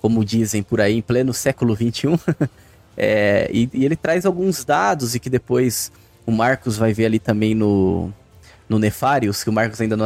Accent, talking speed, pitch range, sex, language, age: Brazilian, 185 wpm, 110-145 Hz, male, Portuguese, 20-39